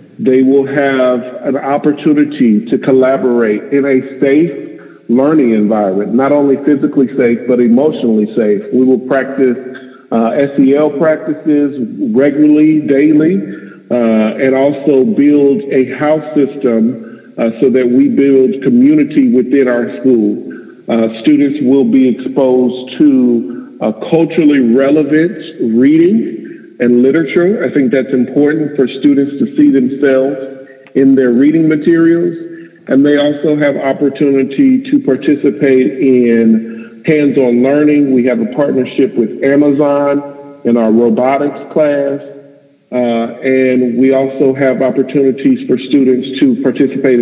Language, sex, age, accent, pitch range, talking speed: English, male, 50-69, American, 125-145 Hz, 125 wpm